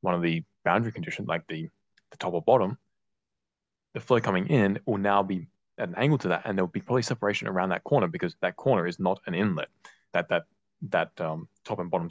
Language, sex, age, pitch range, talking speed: English, male, 20-39, 85-100 Hz, 225 wpm